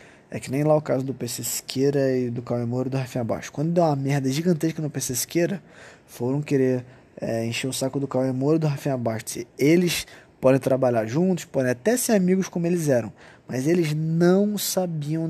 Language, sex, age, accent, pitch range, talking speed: Portuguese, male, 20-39, Brazilian, 145-210 Hz, 210 wpm